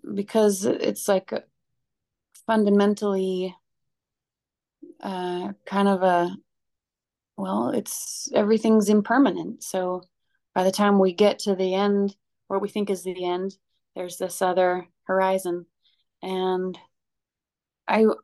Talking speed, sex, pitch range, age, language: 110 wpm, female, 185-225 Hz, 30-49, English